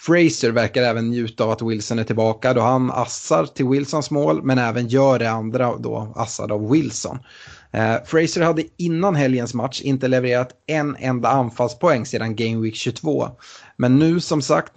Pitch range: 115-140 Hz